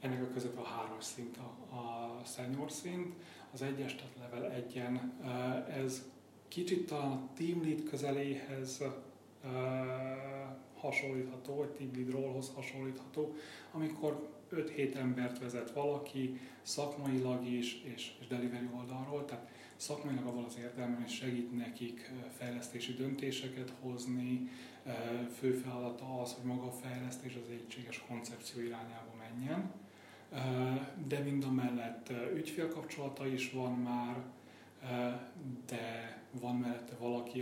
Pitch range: 120-135 Hz